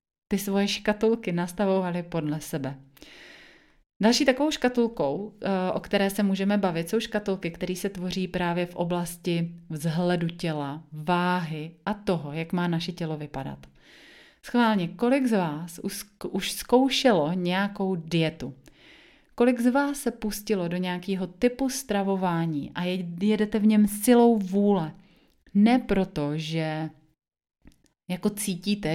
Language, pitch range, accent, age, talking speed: Czech, 165-215 Hz, native, 30-49, 125 wpm